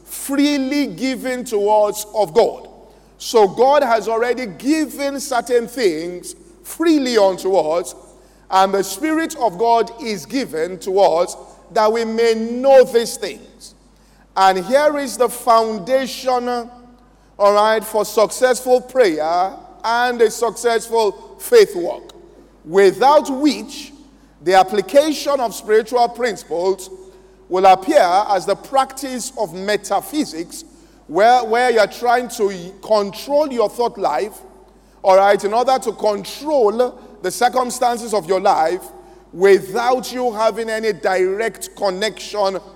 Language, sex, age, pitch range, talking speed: English, male, 50-69, 200-260 Hz, 120 wpm